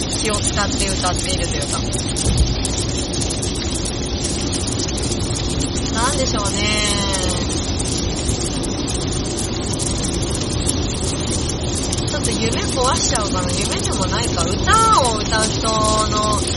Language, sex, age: Japanese, female, 30-49